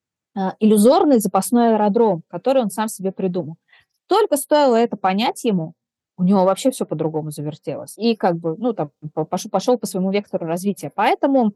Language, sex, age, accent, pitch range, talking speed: Russian, female, 20-39, native, 180-245 Hz, 155 wpm